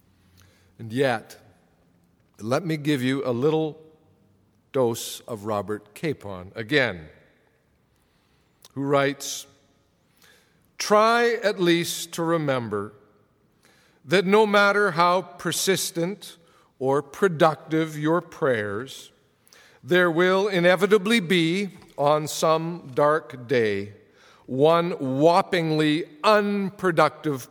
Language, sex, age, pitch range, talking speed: English, male, 50-69, 130-175 Hz, 85 wpm